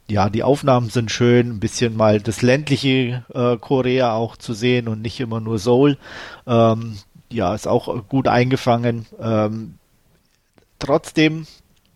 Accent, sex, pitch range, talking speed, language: German, male, 110-130 Hz, 140 wpm, German